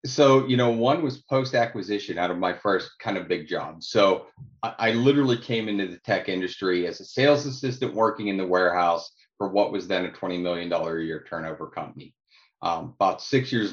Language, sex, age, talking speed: English, male, 30-49, 210 wpm